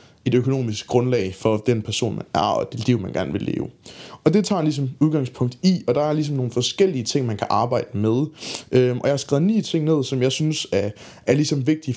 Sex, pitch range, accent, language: male, 120-155 Hz, native, Danish